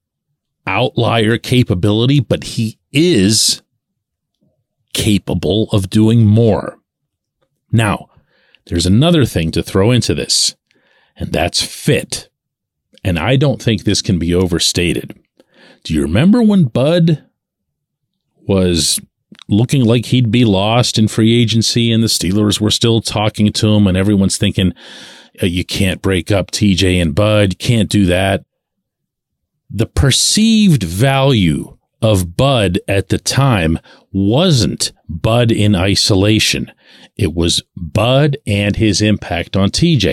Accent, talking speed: American, 125 wpm